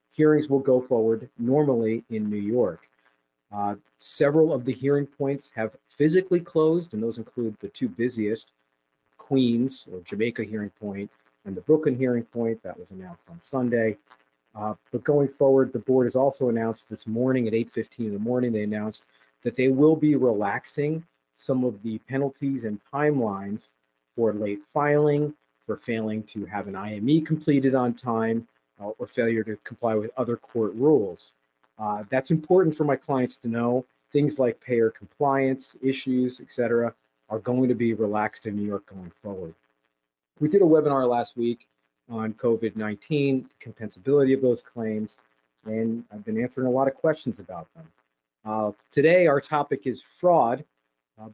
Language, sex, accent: English, male, American